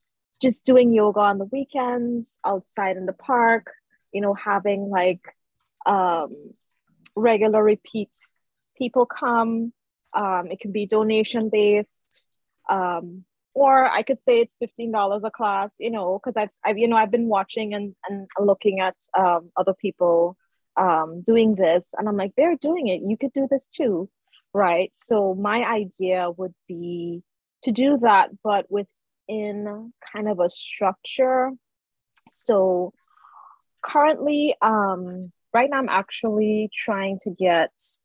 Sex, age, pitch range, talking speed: female, 20-39, 185-235 Hz, 145 wpm